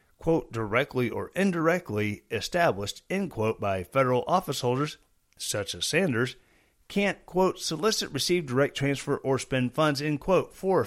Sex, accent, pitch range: male, American, 115-165 Hz